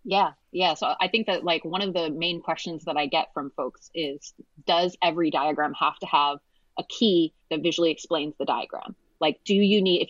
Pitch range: 160-215 Hz